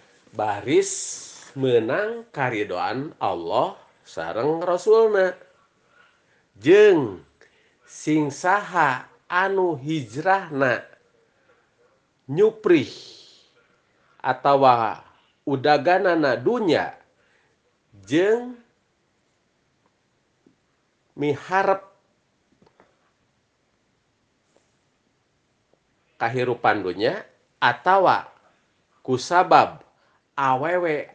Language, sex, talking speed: Indonesian, male, 40 wpm